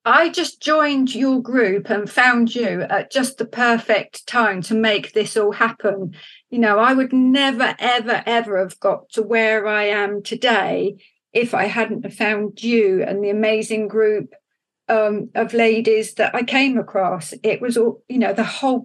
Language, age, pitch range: English, 40-59, 205-240 Hz